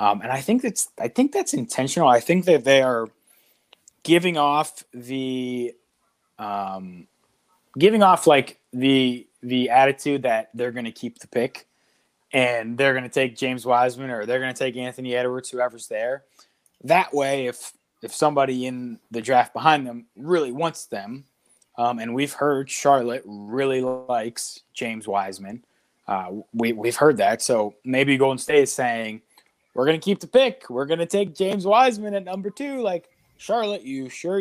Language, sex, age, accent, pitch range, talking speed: English, male, 20-39, American, 125-160 Hz, 170 wpm